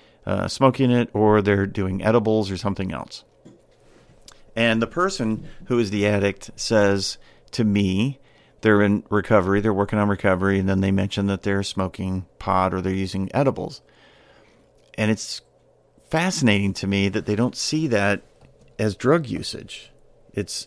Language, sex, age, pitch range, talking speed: English, male, 50-69, 100-115 Hz, 155 wpm